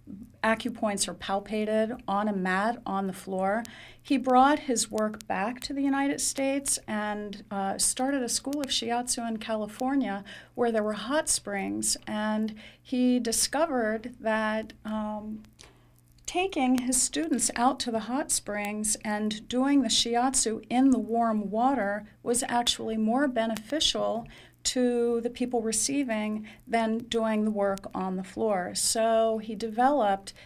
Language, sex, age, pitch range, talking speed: English, female, 40-59, 200-245 Hz, 140 wpm